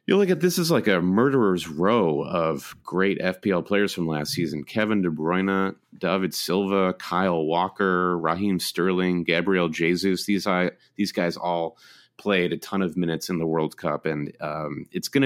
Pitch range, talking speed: 85-105 Hz, 175 wpm